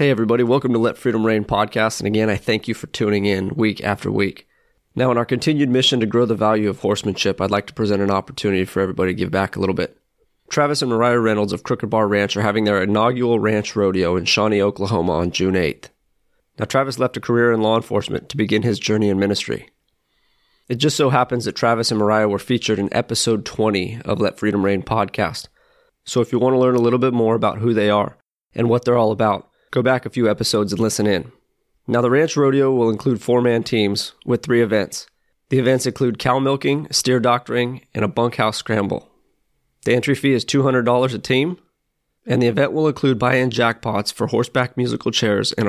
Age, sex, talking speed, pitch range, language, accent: 30-49, male, 215 wpm, 105-125 Hz, English, American